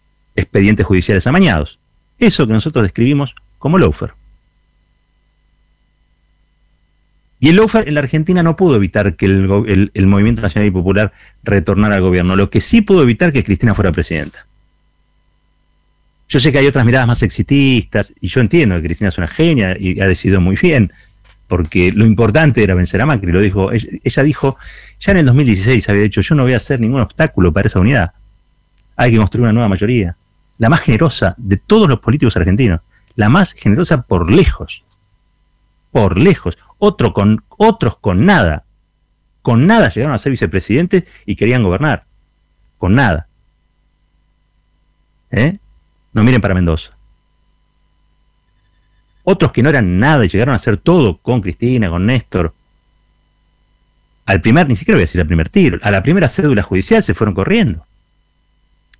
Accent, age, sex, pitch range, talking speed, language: Argentinian, 40-59, male, 95-130 Hz, 160 wpm, Spanish